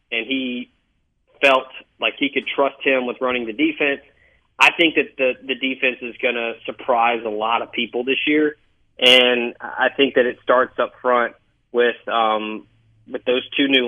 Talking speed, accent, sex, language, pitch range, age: 180 wpm, American, male, English, 115-145 Hz, 30-49